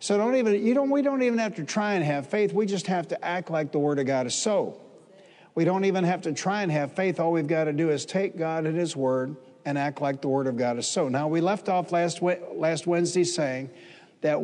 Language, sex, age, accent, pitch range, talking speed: English, male, 60-79, American, 150-180 Hz, 265 wpm